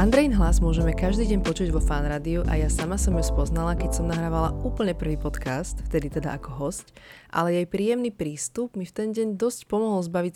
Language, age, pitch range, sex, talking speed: Slovak, 20-39, 155-200 Hz, female, 205 wpm